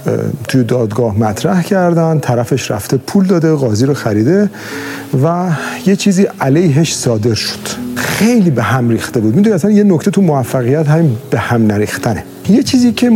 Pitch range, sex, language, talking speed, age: 125-180 Hz, male, Persian, 160 wpm, 40-59